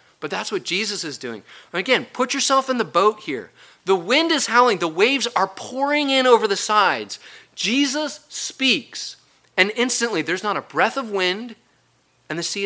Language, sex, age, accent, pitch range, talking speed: English, male, 40-59, American, 180-250 Hz, 180 wpm